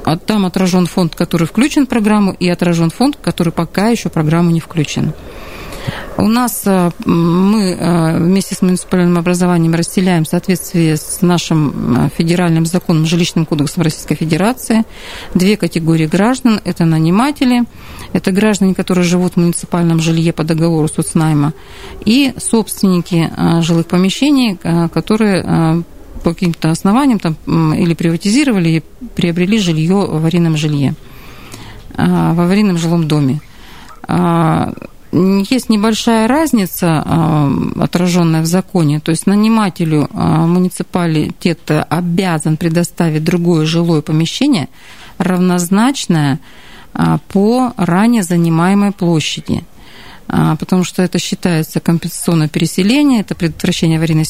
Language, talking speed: Russian, 110 wpm